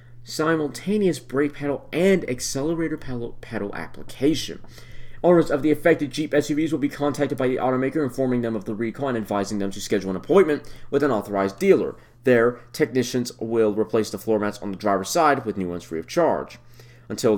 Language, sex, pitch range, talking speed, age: English, male, 110-145 Hz, 185 wpm, 30-49